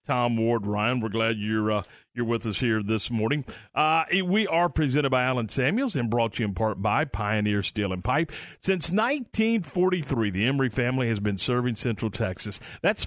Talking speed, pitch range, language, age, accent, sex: 195 wpm, 115-150 Hz, English, 50-69, American, male